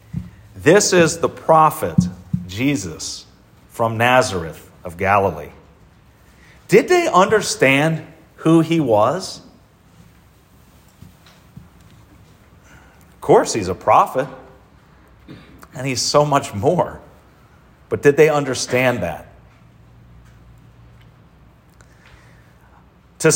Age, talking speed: 40-59, 80 wpm